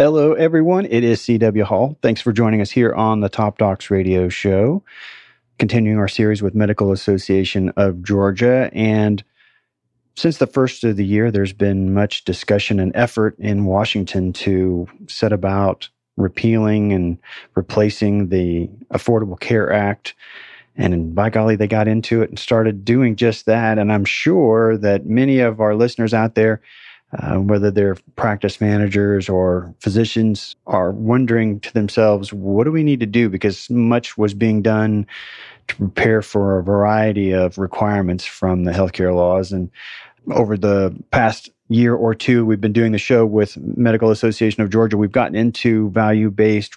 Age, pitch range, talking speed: 40-59, 100-115 Hz, 160 wpm